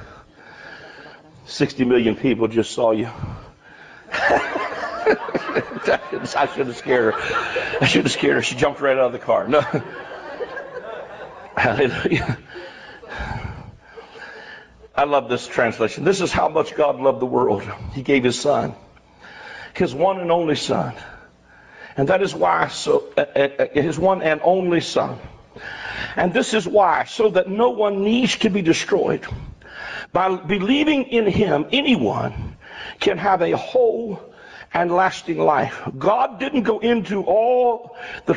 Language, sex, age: English, male, 60-79